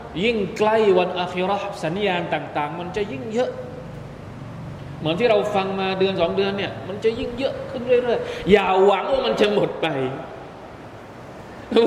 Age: 20-39